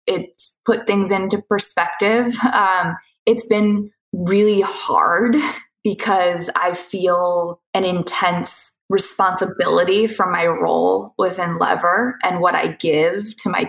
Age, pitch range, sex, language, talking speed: 20-39, 175-230 Hz, female, English, 120 wpm